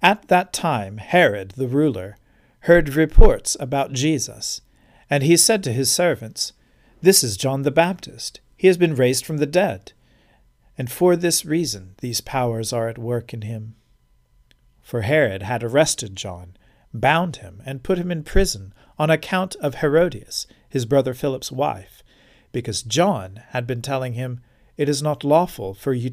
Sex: male